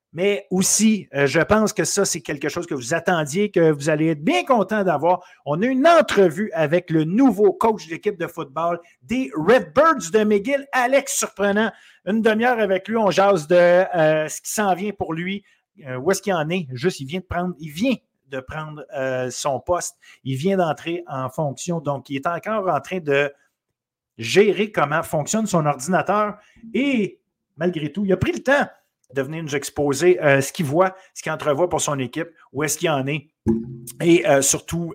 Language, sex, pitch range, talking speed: French, male, 150-200 Hz, 205 wpm